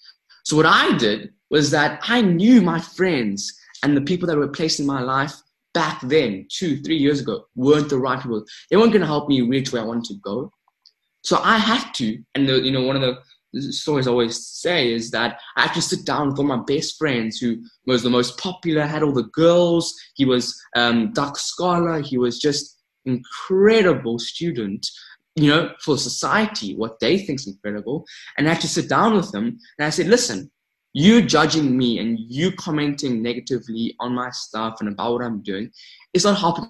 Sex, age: male, 20-39